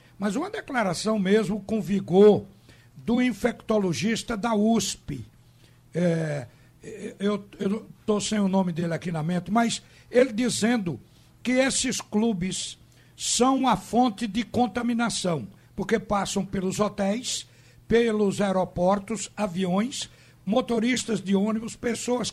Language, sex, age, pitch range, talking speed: Portuguese, male, 60-79, 185-230 Hz, 115 wpm